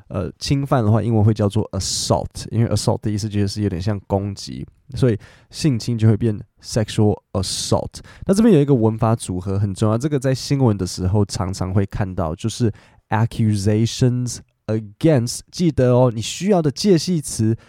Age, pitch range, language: 20-39, 100-125 Hz, Chinese